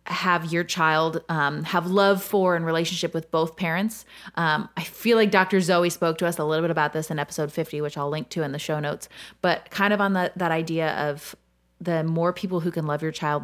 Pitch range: 150-180 Hz